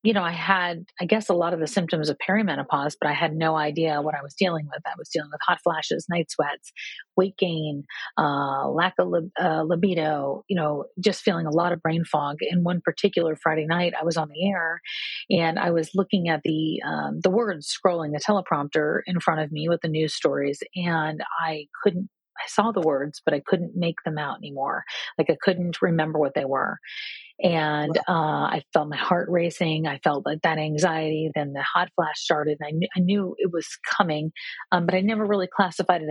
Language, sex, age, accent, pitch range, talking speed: English, female, 40-59, American, 155-190 Hz, 220 wpm